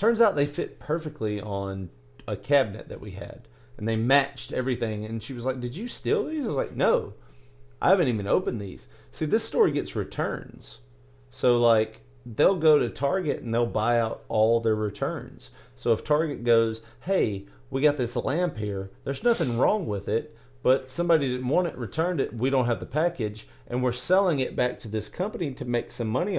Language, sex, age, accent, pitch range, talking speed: English, male, 40-59, American, 95-130 Hz, 200 wpm